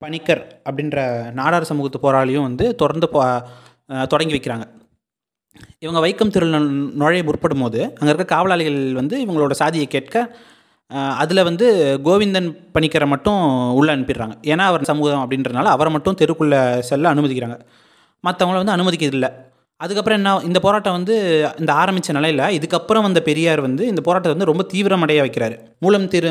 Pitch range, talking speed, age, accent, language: 135-175 Hz, 140 wpm, 20-39, native, Tamil